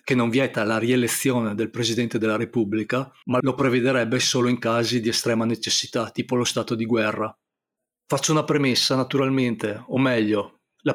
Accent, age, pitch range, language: native, 30-49, 115-130 Hz, Italian